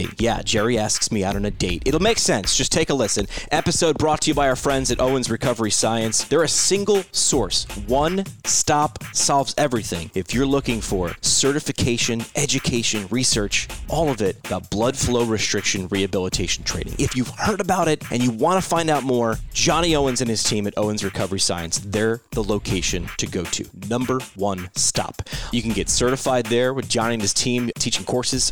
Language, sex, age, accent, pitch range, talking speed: English, male, 30-49, American, 105-140 Hz, 195 wpm